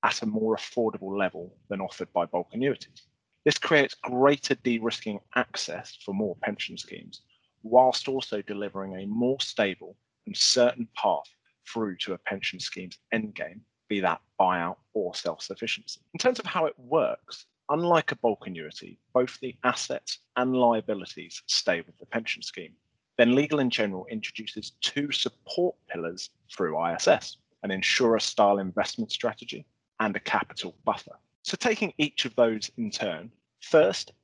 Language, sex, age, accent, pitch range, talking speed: English, male, 30-49, British, 105-145 Hz, 150 wpm